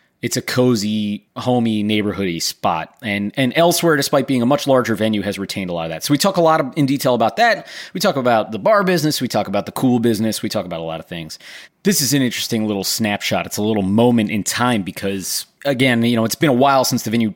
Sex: male